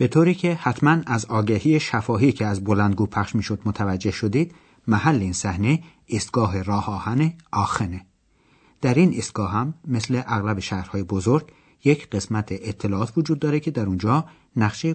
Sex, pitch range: male, 100-150 Hz